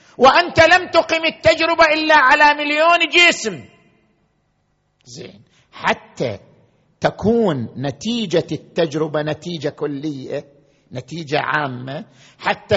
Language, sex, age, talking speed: Arabic, male, 50-69, 85 wpm